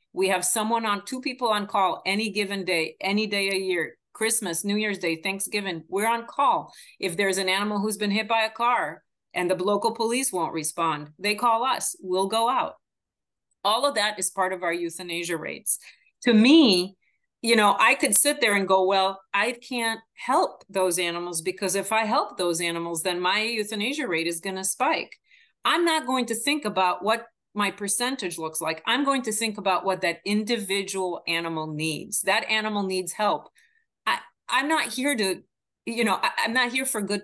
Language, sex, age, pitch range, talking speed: English, female, 40-59, 180-225 Hz, 195 wpm